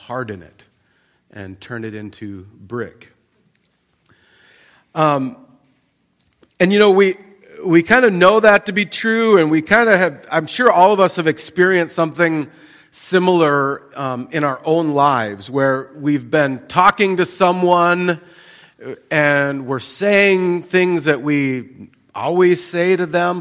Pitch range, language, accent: 135-190 Hz, English, American